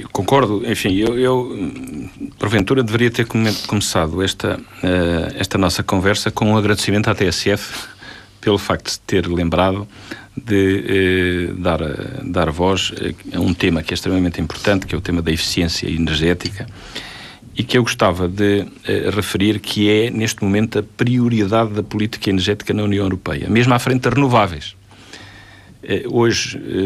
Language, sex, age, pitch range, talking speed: Portuguese, male, 50-69, 95-120 Hz, 145 wpm